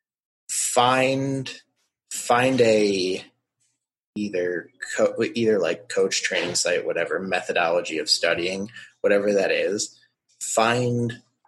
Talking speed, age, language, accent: 95 wpm, 30-49, English, American